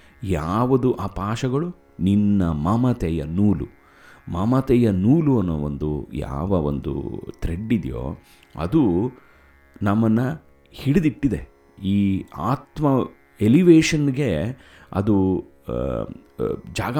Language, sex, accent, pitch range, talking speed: Kannada, male, native, 80-130 Hz, 80 wpm